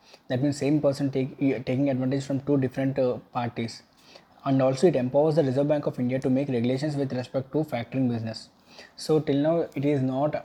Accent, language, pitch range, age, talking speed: Indian, English, 125-145 Hz, 20-39, 195 wpm